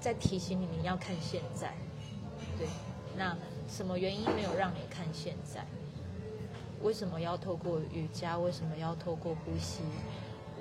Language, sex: Chinese, female